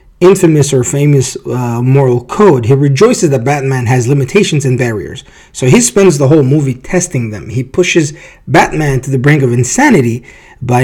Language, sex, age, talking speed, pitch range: English, male, 30-49, 170 wpm, 125-155 Hz